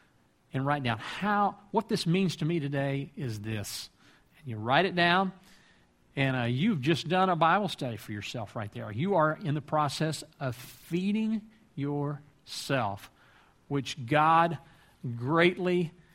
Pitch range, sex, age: 125-160 Hz, male, 50-69